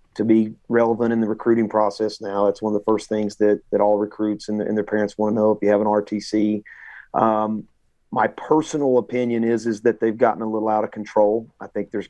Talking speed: 235 wpm